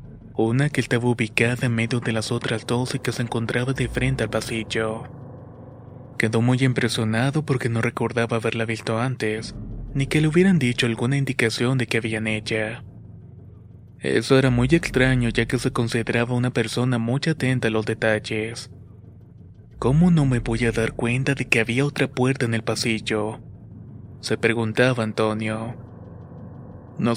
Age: 20-39